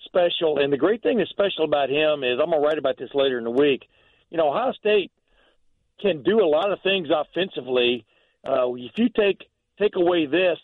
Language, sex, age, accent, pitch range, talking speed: English, male, 50-69, American, 140-170 Hz, 215 wpm